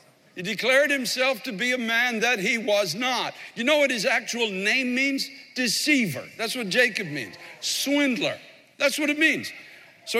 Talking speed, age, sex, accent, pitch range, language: 170 wpm, 60-79, male, American, 215-290 Hz, English